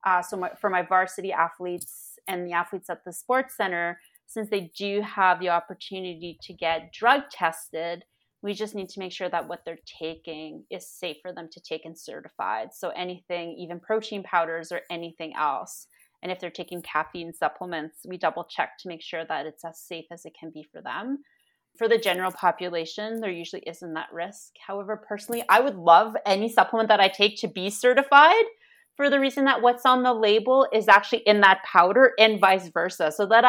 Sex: female